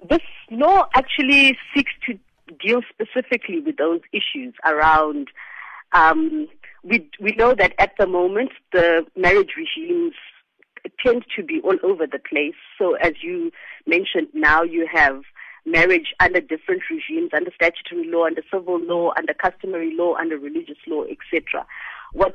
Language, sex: English, female